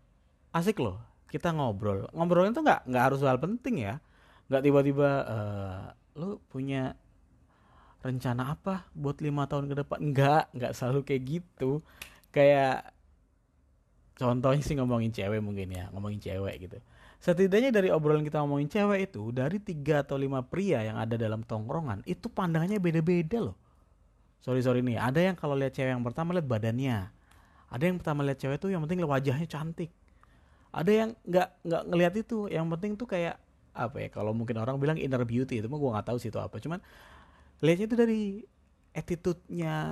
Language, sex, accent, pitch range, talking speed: Indonesian, male, native, 120-175 Hz, 165 wpm